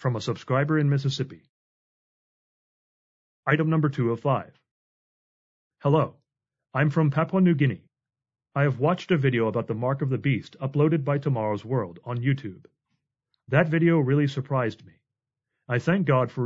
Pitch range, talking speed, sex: 120-150 Hz, 155 wpm, male